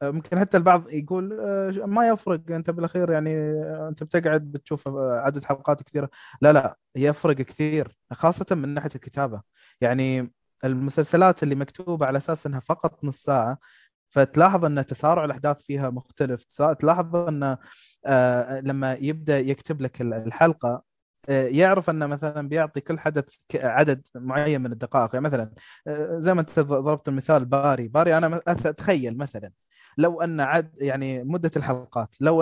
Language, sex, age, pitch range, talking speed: Arabic, male, 20-39, 135-165 Hz, 135 wpm